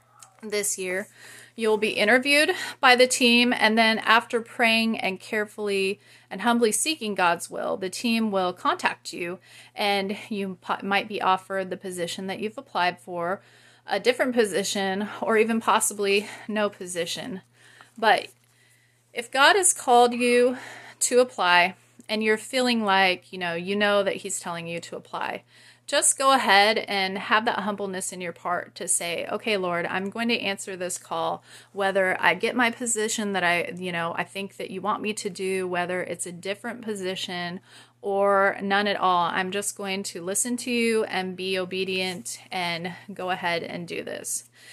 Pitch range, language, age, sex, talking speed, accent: 185-230 Hz, English, 30-49, female, 170 wpm, American